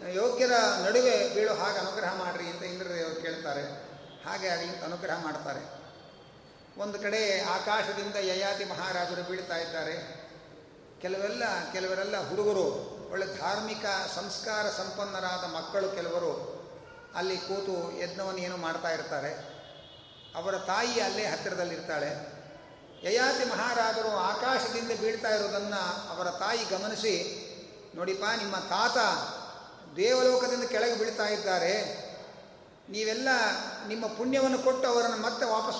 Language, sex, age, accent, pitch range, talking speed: Kannada, male, 40-59, native, 185-235 Hz, 100 wpm